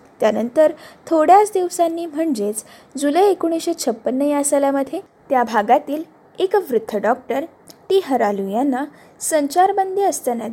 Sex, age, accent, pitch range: female, 10-29, native, 225-330 Hz